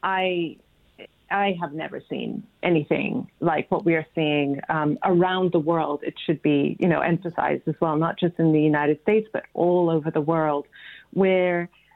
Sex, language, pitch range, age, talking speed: female, English, 170-195 Hz, 40-59, 175 wpm